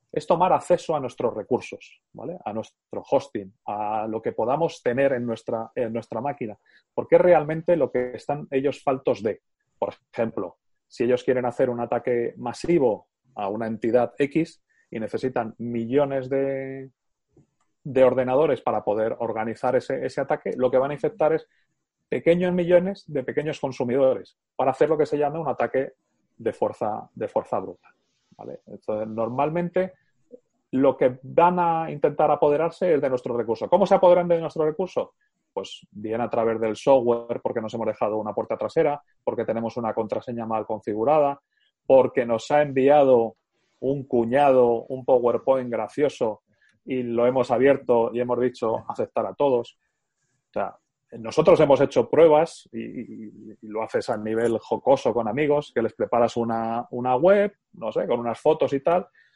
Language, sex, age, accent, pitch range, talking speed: Spanish, male, 30-49, Spanish, 115-150 Hz, 160 wpm